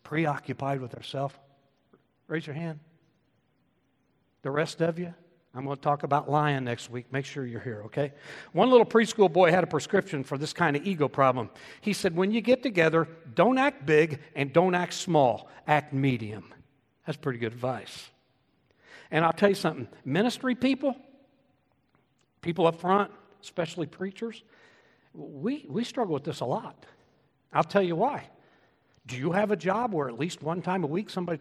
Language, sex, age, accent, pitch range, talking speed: English, male, 60-79, American, 130-185 Hz, 175 wpm